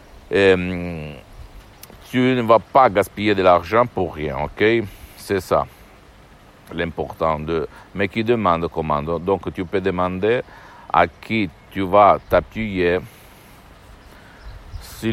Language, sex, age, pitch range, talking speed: Italian, male, 60-79, 85-105 Hz, 115 wpm